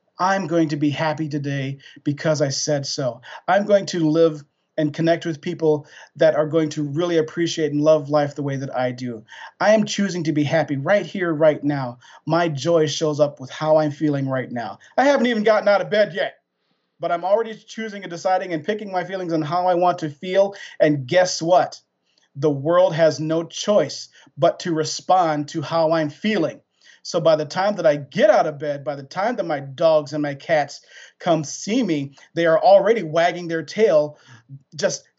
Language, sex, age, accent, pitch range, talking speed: English, male, 40-59, American, 150-180 Hz, 205 wpm